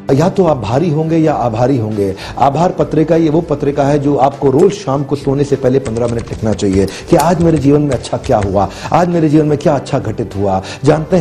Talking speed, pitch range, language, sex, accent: 230 wpm, 140-180 Hz, Hindi, male, native